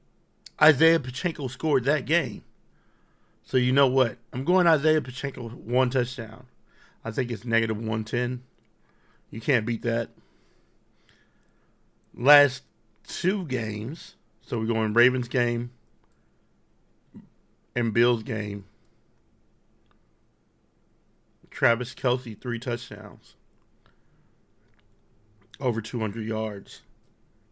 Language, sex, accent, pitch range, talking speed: English, male, American, 110-130 Hz, 90 wpm